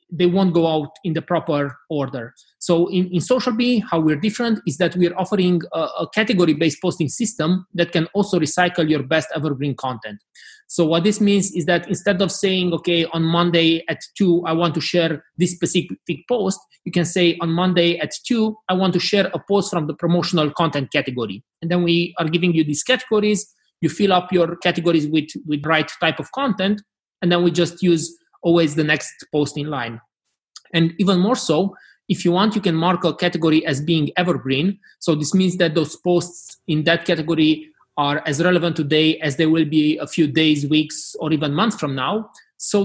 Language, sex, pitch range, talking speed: English, male, 155-180 Hz, 200 wpm